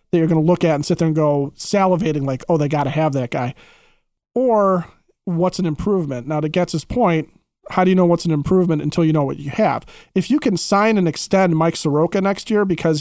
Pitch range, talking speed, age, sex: 155-190 Hz, 240 wpm, 30-49, male